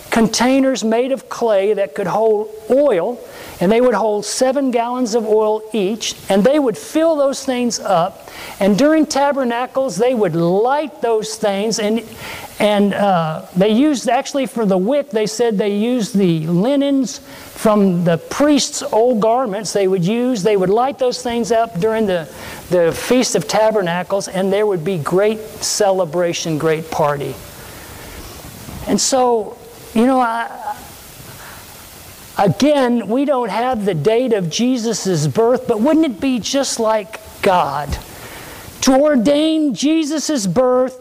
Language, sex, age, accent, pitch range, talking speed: English, male, 50-69, American, 200-265 Hz, 145 wpm